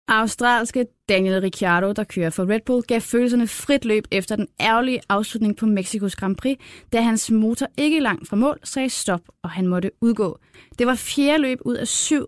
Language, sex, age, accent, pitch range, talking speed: Danish, female, 20-39, native, 195-240 Hz, 195 wpm